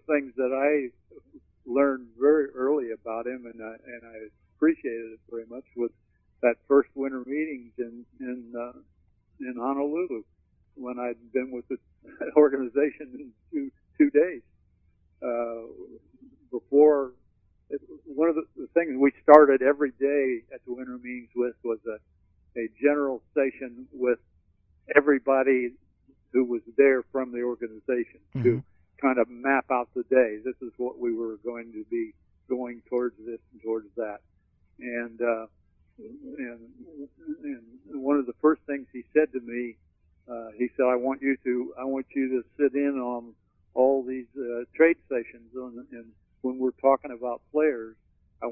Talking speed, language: 140 wpm, English